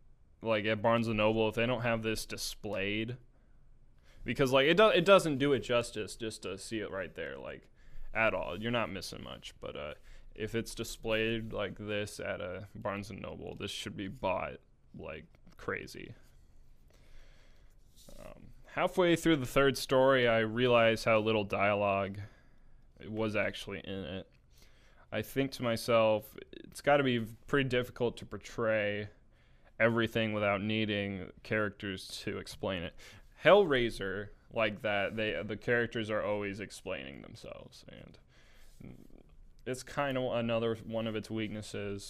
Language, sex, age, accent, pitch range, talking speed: English, male, 20-39, American, 100-120 Hz, 150 wpm